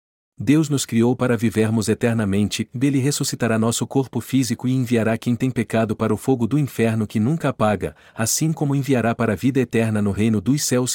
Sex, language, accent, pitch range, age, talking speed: male, Portuguese, Brazilian, 105-135 Hz, 40-59, 190 wpm